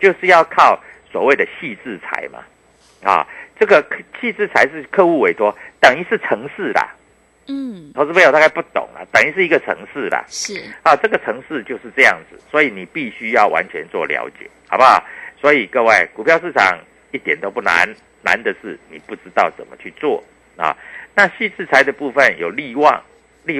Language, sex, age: Chinese, male, 50-69